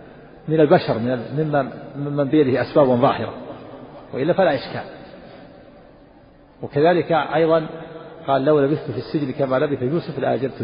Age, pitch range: 50-69, 125-165 Hz